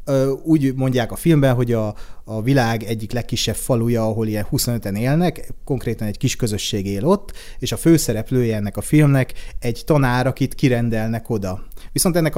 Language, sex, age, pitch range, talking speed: Hungarian, male, 30-49, 115-135 Hz, 170 wpm